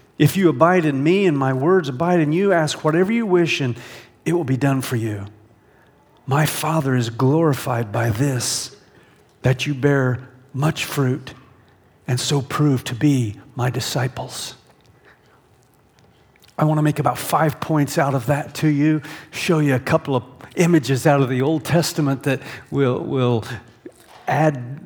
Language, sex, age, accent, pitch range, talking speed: English, male, 50-69, American, 135-170 Hz, 160 wpm